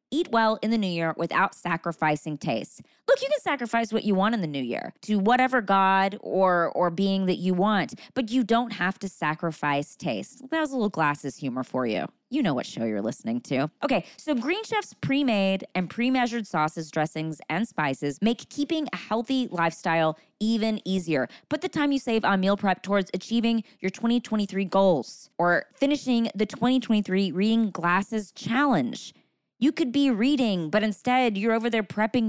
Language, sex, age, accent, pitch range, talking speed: English, female, 20-39, American, 185-255 Hz, 185 wpm